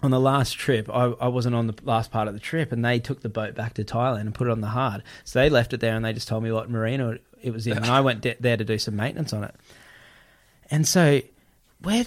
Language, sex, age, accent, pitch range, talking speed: English, male, 20-39, Australian, 110-135 Hz, 285 wpm